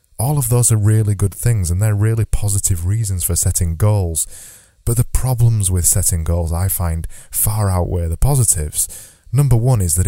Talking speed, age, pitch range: 185 wpm, 20-39, 90-110 Hz